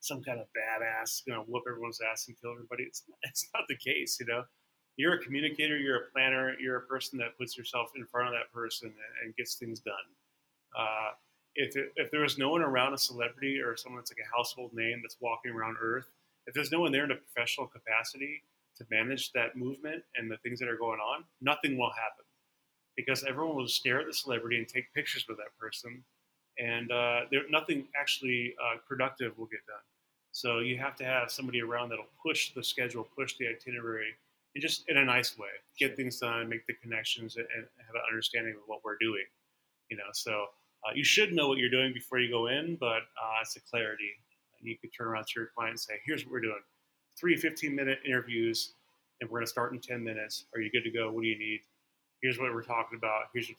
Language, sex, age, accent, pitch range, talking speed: English, male, 30-49, American, 115-130 Hz, 230 wpm